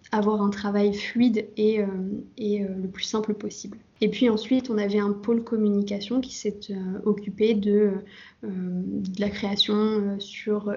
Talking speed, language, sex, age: 145 wpm, French, female, 20-39